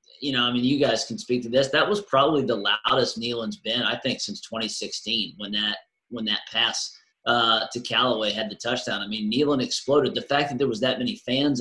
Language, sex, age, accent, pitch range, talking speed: English, male, 30-49, American, 120-140 Hz, 225 wpm